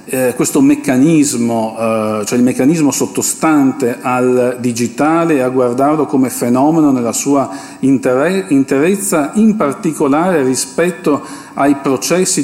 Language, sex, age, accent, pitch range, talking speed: Italian, male, 50-69, native, 115-150 Hz, 110 wpm